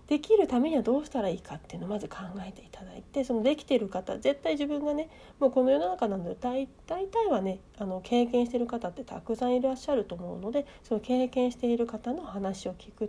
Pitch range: 205-280 Hz